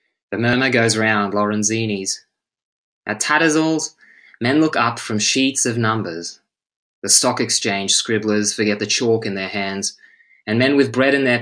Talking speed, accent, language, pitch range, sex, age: 160 wpm, Australian, Swedish, 105-125 Hz, male, 20-39